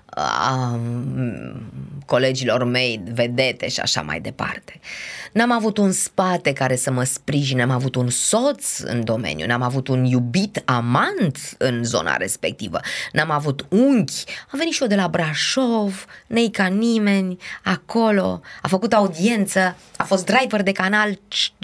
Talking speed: 145 wpm